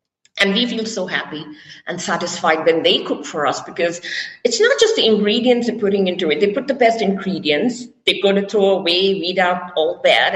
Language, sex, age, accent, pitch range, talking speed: English, female, 50-69, Indian, 185-265 Hz, 210 wpm